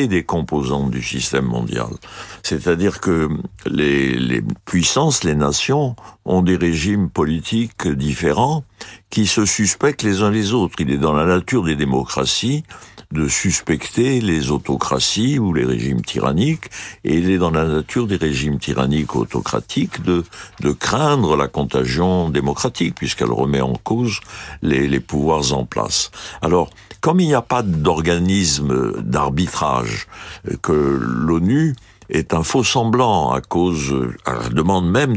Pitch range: 75-110 Hz